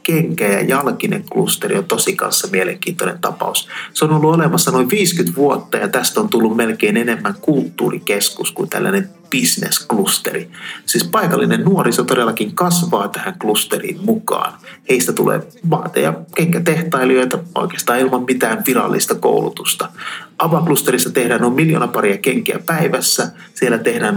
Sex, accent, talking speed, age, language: male, native, 130 wpm, 30-49, Finnish